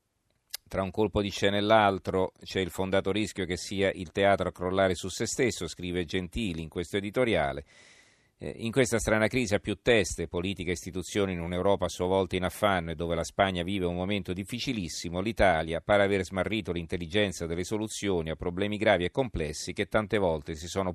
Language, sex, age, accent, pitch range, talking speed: Italian, male, 40-59, native, 85-100 Hz, 195 wpm